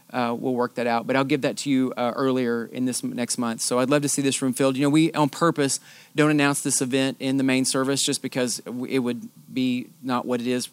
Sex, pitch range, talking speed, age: male, 125-145 Hz, 265 wpm, 30-49